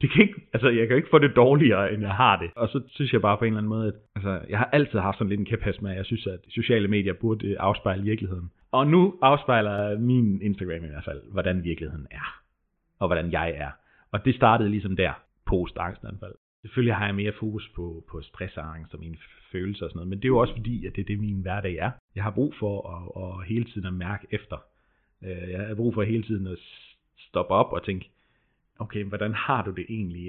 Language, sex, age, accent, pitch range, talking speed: Danish, male, 30-49, native, 95-120 Hz, 245 wpm